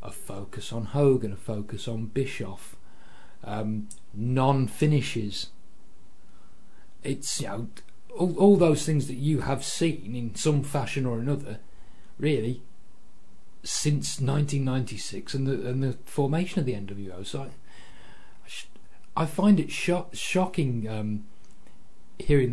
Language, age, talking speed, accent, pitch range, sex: English, 40-59, 130 wpm, British, 115-145 Hz, male